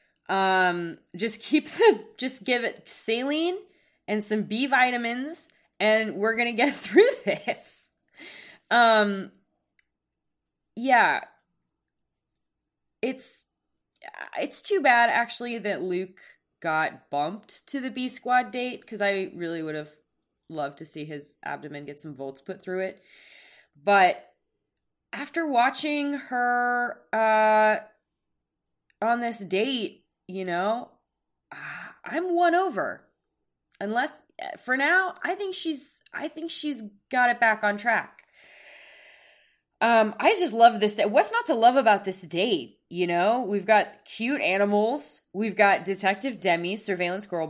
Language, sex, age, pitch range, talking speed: English, female, 20-39, 190-255 Hz, 130 wpm